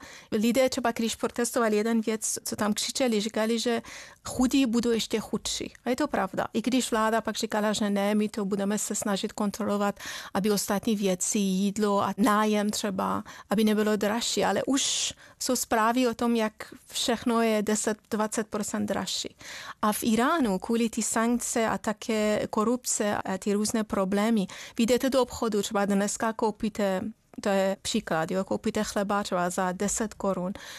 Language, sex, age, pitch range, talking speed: Czech, female, 30-49, 210-250 Hz, 160 wpm